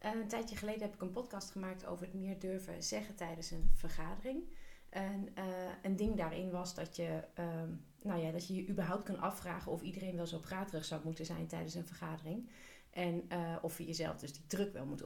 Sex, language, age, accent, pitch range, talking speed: female, Dutch, 30-49, Dutch, 170-210 Hz, 215 wpm